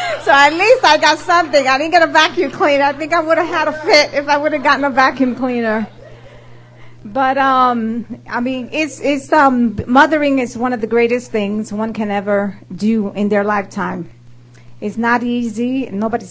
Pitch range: 210-270 Hz